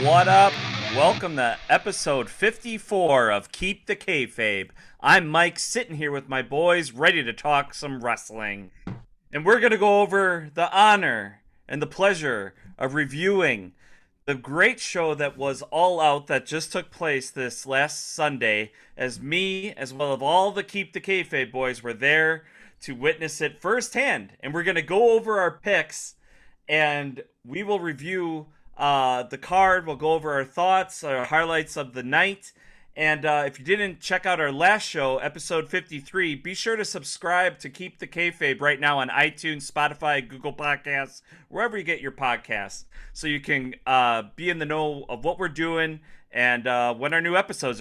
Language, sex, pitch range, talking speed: English, male, 135-180 Hz, 175 wpm